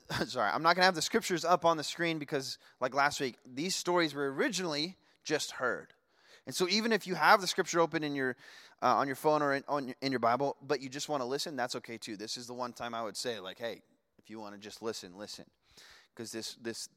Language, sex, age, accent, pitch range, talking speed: English, male, 20-39, American, 120-170 Hz, 260 wpm